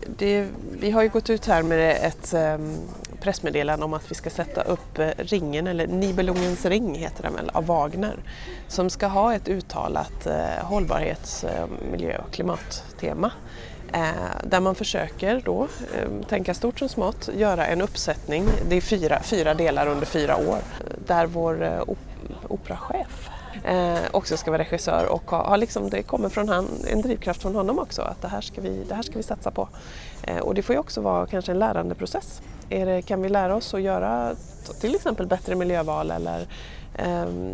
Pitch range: 155-200 Hz